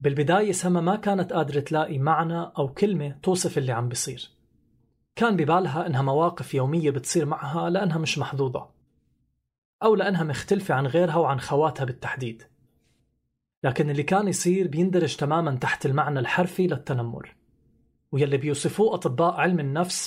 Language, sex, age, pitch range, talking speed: Arabic, male, 30-49, 140-175 Hz, 140 wpm